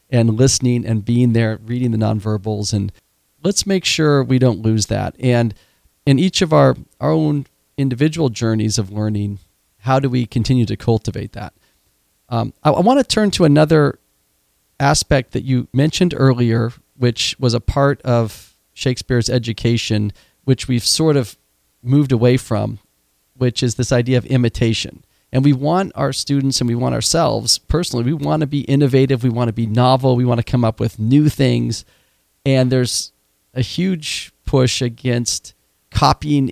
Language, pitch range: English, 115-140 Hz